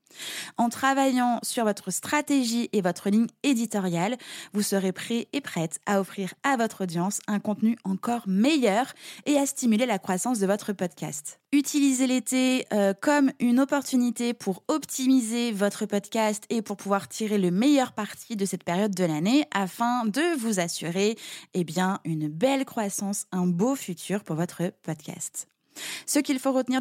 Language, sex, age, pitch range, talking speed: French, female, 20-39, 190-245 Hz, 160 wpm